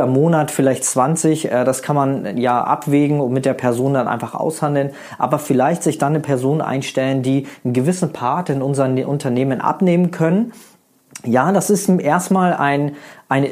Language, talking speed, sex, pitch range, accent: German, 165 wpm, male, 125-155 Hz, German